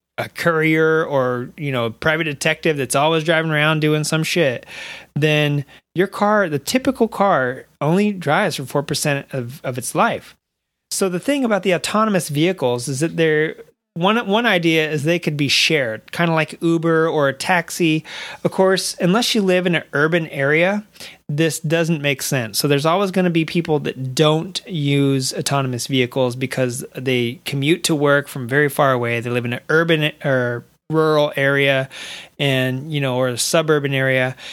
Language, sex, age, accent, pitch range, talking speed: English, male, 30-49, American, 140-165 Hz, 180 wpm